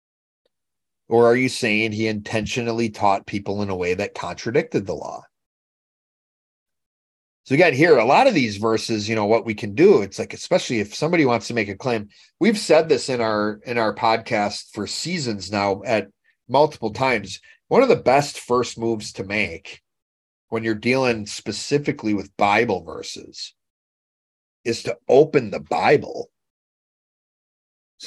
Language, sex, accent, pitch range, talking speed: English, male, American, 105-135 Hz, 155 wpm